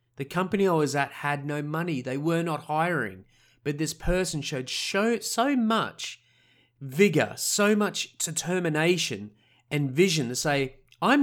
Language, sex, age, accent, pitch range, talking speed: English, male, 30-49, Australian, 135-180 Hz, 145 wpm